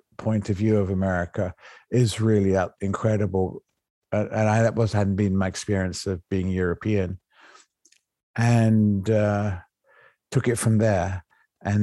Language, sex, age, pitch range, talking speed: English, male, 50-69, 95-110 Hz, 135 wpm